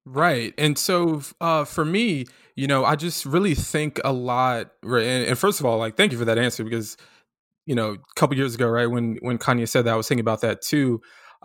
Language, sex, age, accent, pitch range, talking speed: English, male, 20-39, American, 120-150 Hz, 245 wpm